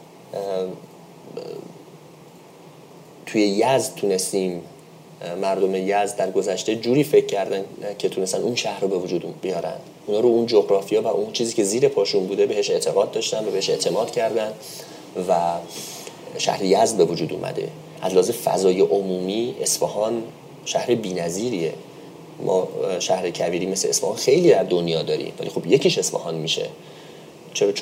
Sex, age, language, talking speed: male, 30-49, Persian, 135 wpm